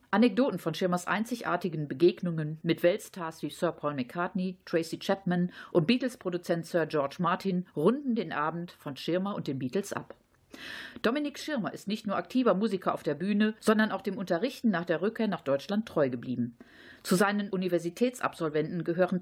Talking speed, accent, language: 160 wpm, German, German